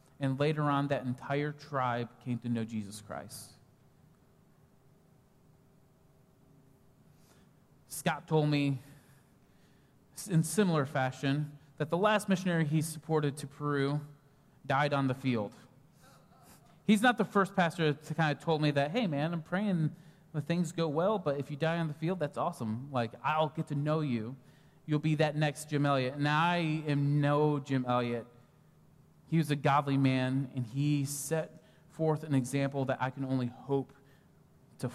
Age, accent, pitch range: 30-49, American, 135-165 Hz